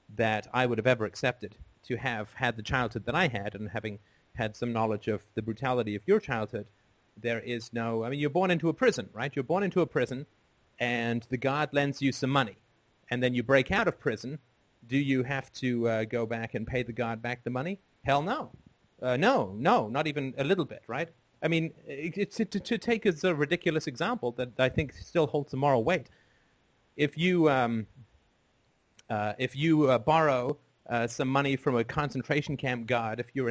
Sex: male